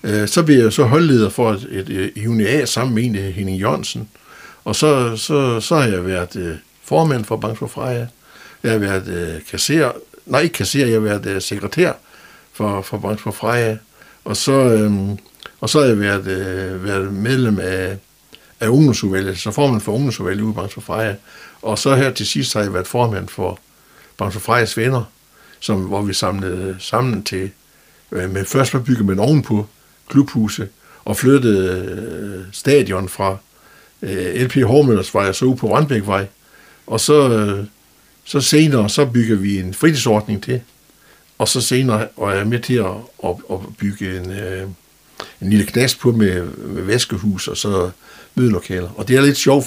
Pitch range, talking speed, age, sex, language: 100-125 Hz, 165 wpm, 60-79, male, Danish